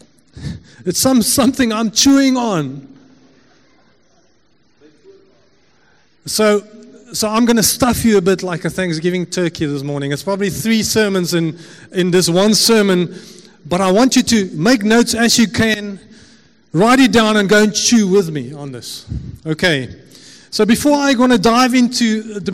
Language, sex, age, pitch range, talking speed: English, male, 30-49, 185-245 Hz, 170 wpm